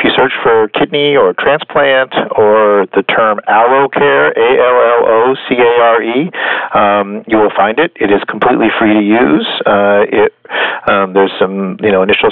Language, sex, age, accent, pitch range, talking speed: English, male, 40-59, American, 100-120 Hz, 185 wpm